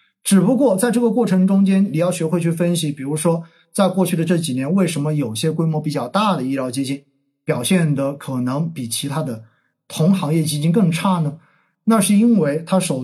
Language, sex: Chinese, male